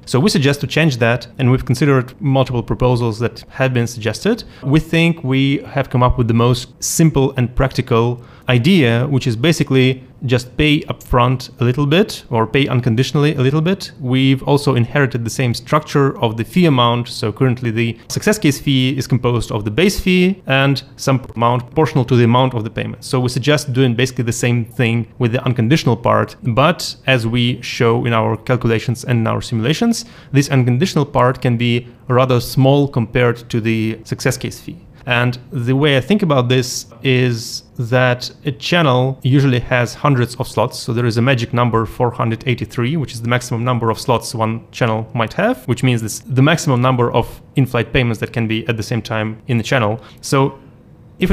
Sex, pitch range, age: male, 120-135 Hz, 30-49